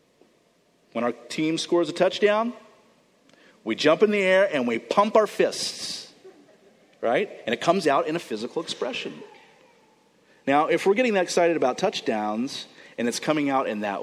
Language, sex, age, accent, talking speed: English, male, 40-59, American, 165 wpm